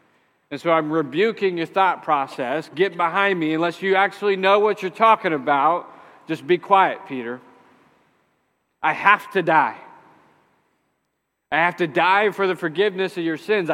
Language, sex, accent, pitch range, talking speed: English, male, American, 165-195 Hz, 155 wpm